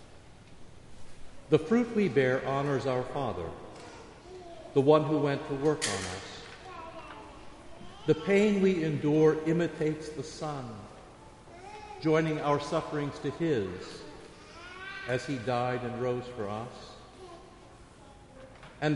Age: 50-69